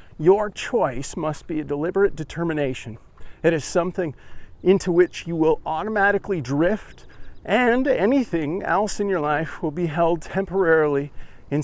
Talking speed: 140 wpm